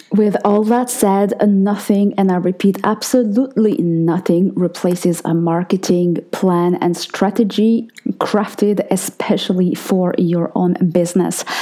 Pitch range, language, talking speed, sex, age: 170-205 Hz, English, 115 wpm, female, 20-39